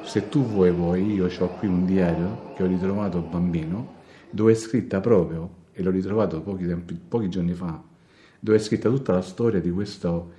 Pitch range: 90-110 Hz